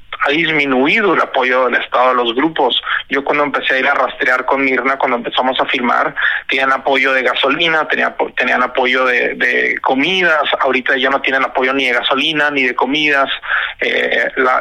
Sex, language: male, Spanish